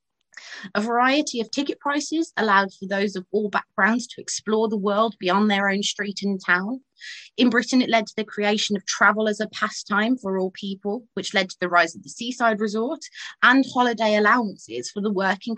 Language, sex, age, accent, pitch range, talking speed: English, female, 30-49, British, 190-240 Hz, 195 wpm